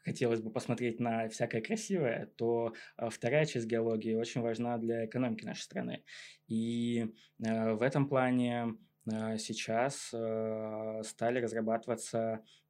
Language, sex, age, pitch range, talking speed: Russian, male, 20-39, 110-135 Hz, 125 wpm